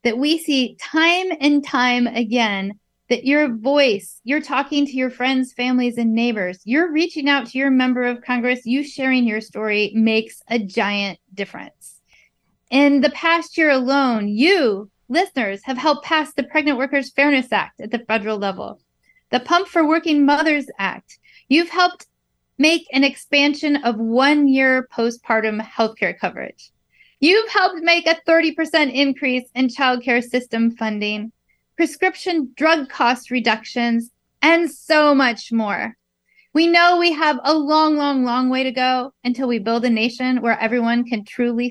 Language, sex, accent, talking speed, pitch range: English, female, American, 155 wpm, 235-290 Hz